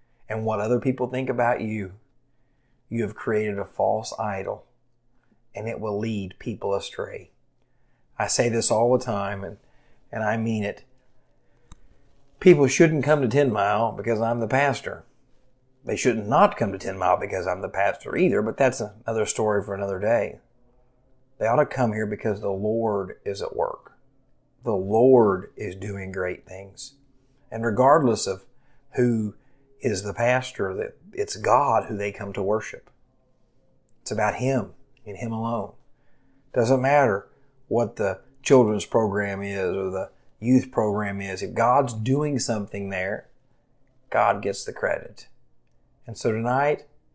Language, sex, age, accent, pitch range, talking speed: English, male, 40-59, American, 105-130 Hz, 155 wpm